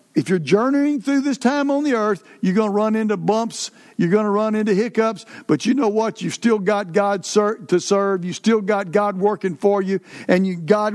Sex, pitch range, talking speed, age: male, 190-245 Hz, 220 wpm, 60-79